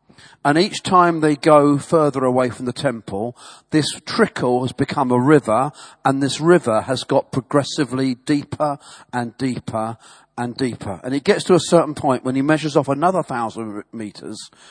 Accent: British